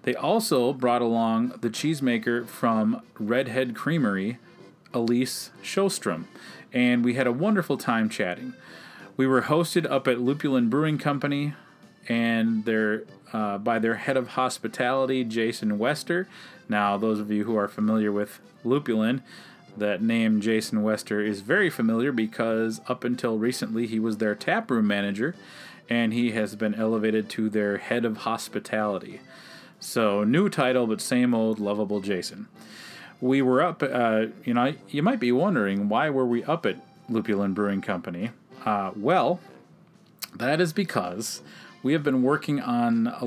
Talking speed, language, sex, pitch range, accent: 150 wpm, English, male, 110-135 Hz, American